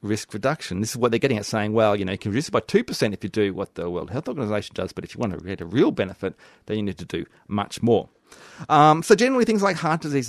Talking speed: 290 wpm